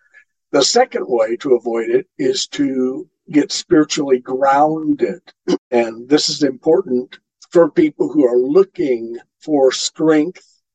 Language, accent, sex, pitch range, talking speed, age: English, American, male, 125-190 Hz, 125 wpm, 50-69